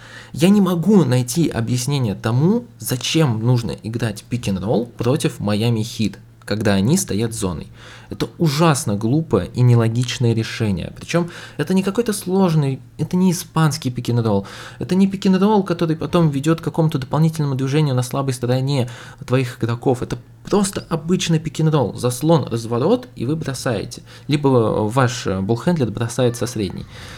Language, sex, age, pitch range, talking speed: Russian, male, 20-39, 105-145 Hz, 140 wpm